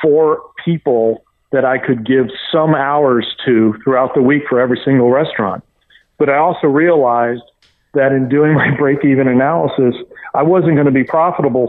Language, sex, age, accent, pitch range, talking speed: English, male, 40-59, American, 130-155 Hz, 165 wpm